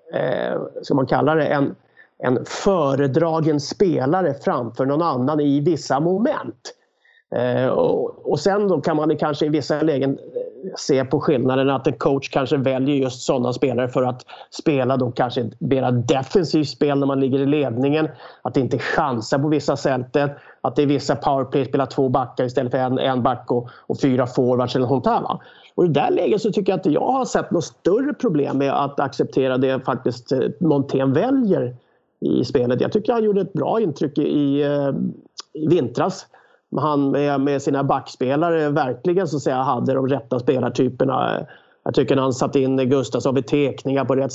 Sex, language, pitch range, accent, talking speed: male, English, 135-185 Hz, Swedish, 175 wpm